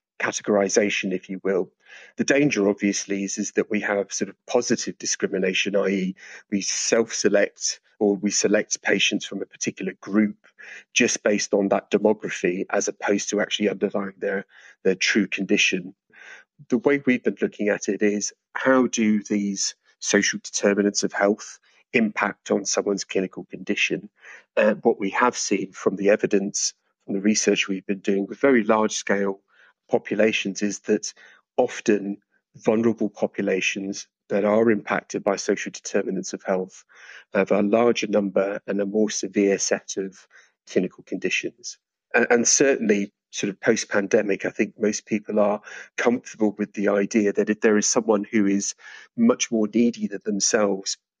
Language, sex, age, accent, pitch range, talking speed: English, male, 40-59, British, 100-110 Hz, 155 wpm